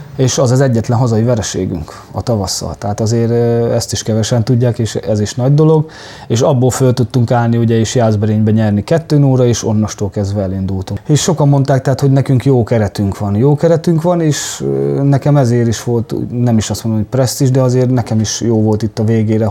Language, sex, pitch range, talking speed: Hungarian, male, 110-130 Hz, 205 wpm